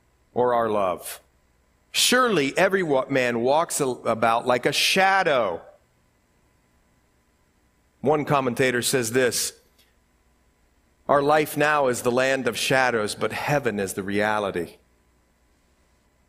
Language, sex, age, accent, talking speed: English, male, 50-69, American, 105 wpm